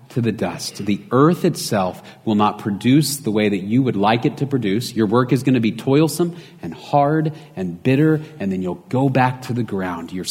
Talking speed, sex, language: 215 wpm, male, English